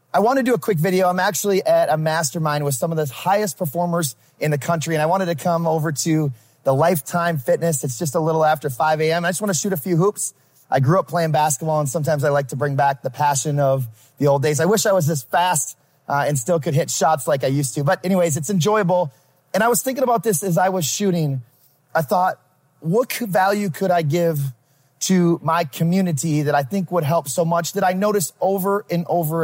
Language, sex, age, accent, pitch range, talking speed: English, male, 30-49, American, 145-185 Hz, 240 wpm